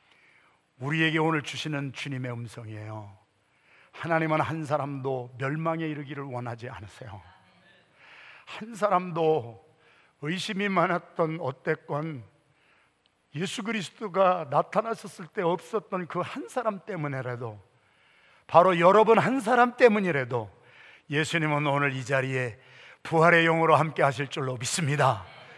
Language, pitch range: Korean, 130-170 Hz